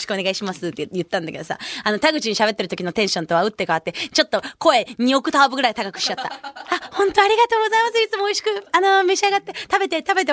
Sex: female